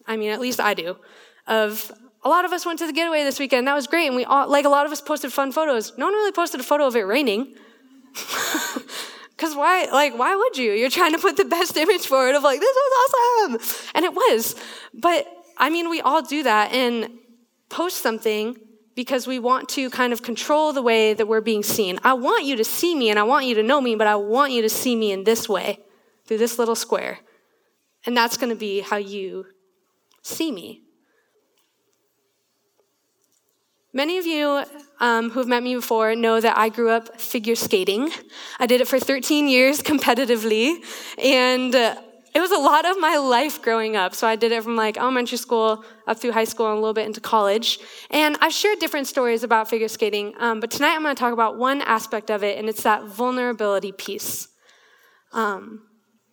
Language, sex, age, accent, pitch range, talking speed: English, female, 20-39, American, 225-300 Hz, 210 wpm